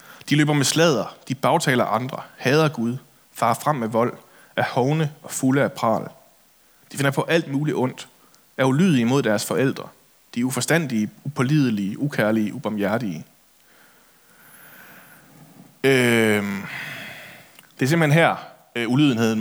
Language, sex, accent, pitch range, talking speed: Danish, male, native, 115-150 Hz, 125 wpm